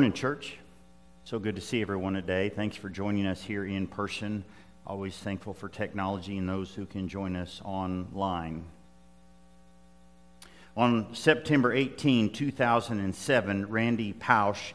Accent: American